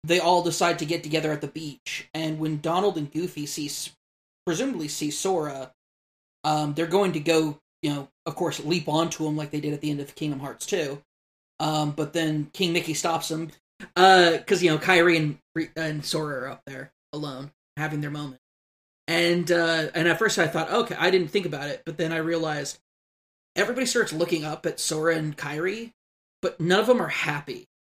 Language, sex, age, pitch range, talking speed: English, male, 20-39, 150-170 Hz, 205 wpm